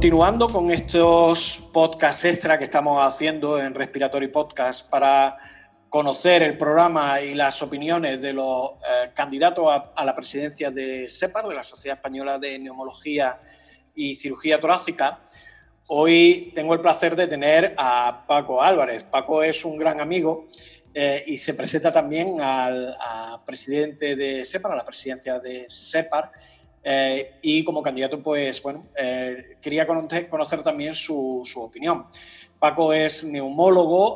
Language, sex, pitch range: Spanish, male, 135-170 Hz